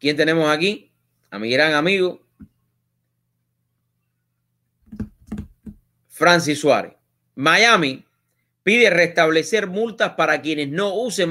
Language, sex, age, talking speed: English, male, 30-49, 90 wpm